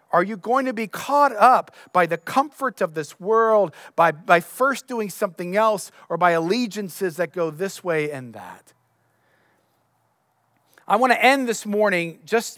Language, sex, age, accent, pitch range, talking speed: English, male, 40-59, American, 170-245 Hz, 160 wpm